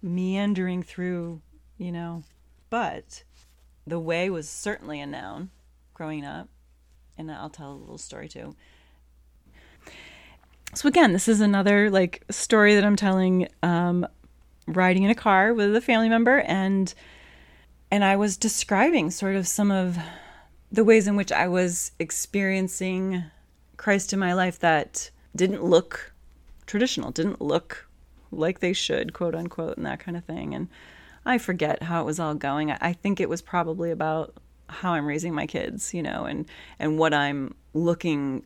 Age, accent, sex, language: 30-49, American, female, English